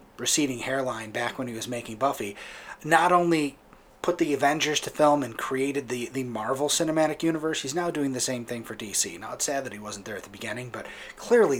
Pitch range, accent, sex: 120-150 Hz, American, male